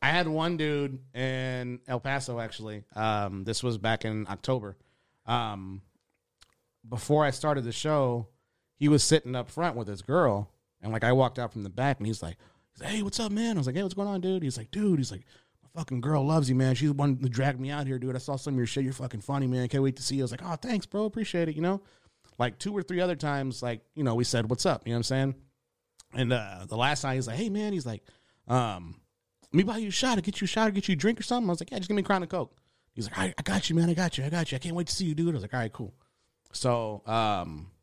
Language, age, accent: English, 30-49, American